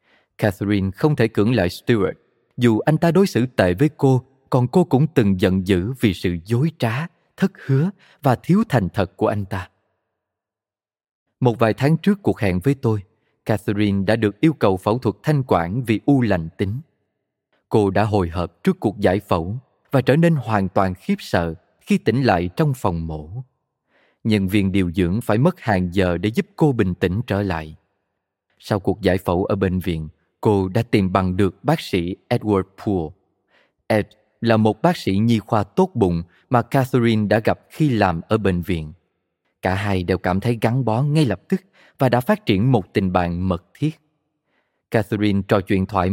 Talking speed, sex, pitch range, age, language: 190 wpm, male, 95-130 Hz, 20-39, Vietnamese